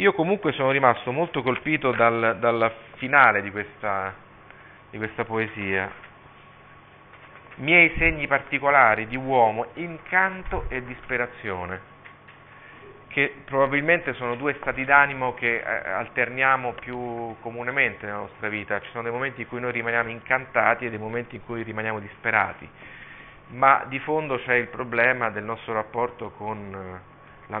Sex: male